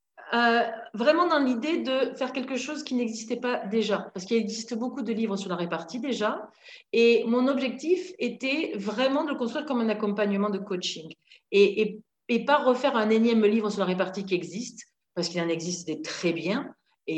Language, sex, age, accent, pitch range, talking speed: French, female, 40-59, French, 190-255 Hz, 195 wpm